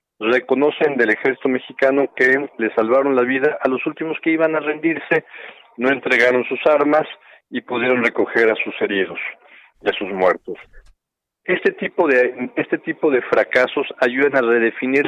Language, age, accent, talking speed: Spanish, 50-69, Mexican, 160 wpm